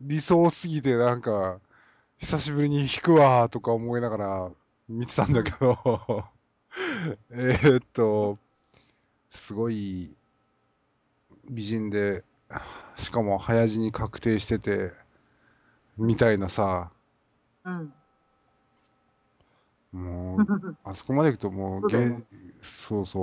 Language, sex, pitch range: Japanese, male, 100-135 Hz